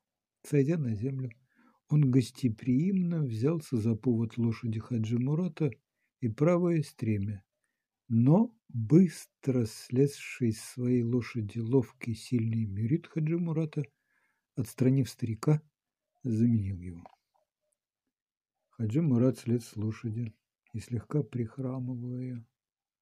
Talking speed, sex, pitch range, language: 85 wpm, male, 115-145 Hz, Ukrainian